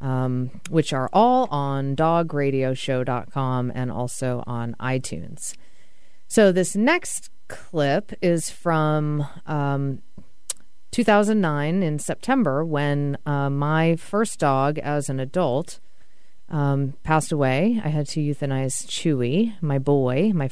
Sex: female